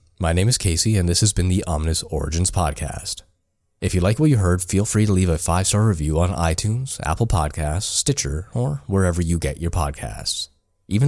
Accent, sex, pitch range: American, male, 80-100 Hz